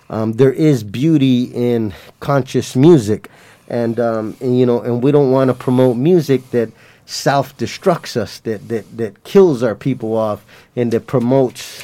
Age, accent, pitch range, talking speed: 20-39, American, 115-140 Hz, 160 wpm